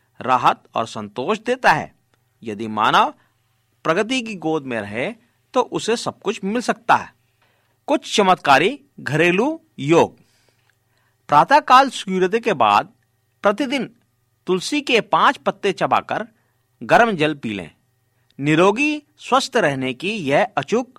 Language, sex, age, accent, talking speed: Hindi, male, 50-69, native, 125 wpm